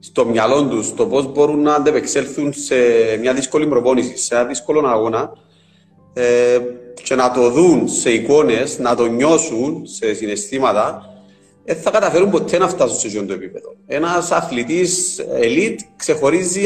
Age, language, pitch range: 30-49, Greek, 120-165 Hz